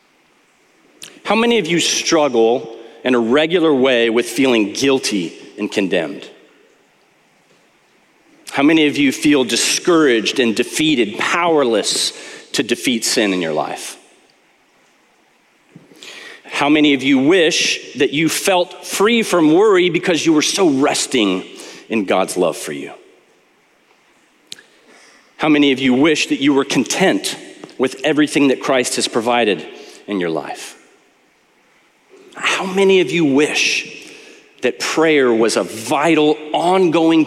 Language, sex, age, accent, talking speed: English, male, 40-59, American, 125 wpm